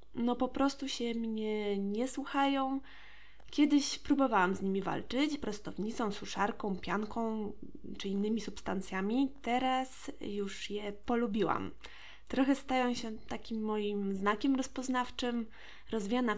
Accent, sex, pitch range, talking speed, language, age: native, female, 210-265 Hz, 110 wpm, Polish, 20-39